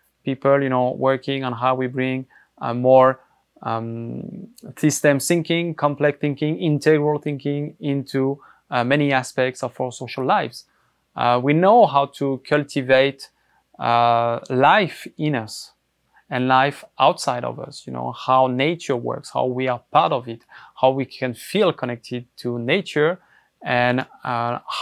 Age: 20-39